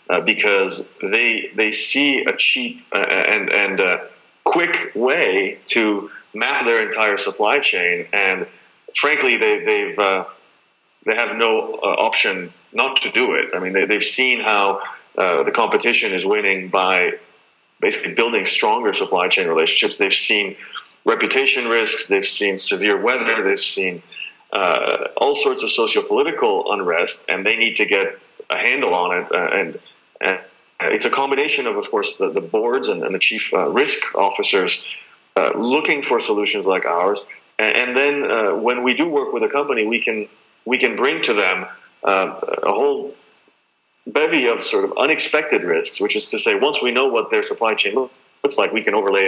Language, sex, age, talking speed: English, male, 30-49, 175 wpm